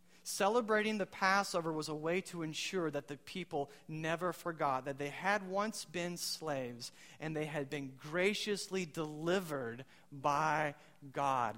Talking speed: 140 wpm